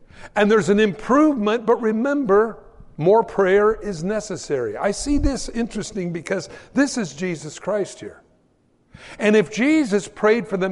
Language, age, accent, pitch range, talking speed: English, 60-79, American, 175-230 Hz, 145 wpm